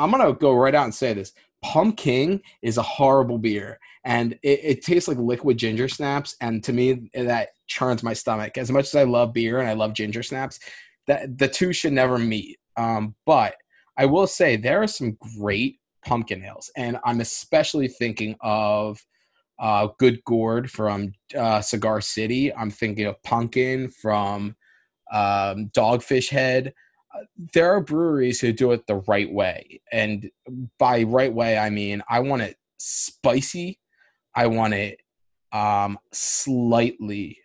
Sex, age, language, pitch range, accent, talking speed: male, 20-39, English, 110-140 Hz, American, 160 wpm